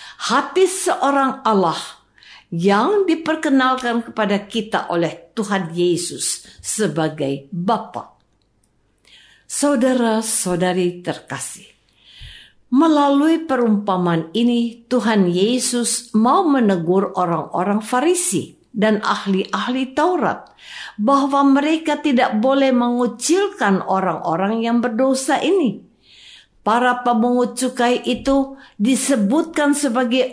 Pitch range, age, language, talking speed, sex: 200-275 Hz, 50-69, Indonesian, 80 wpm, female